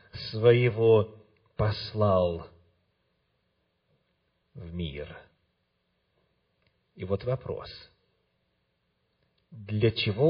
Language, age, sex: Russian, 40-59, male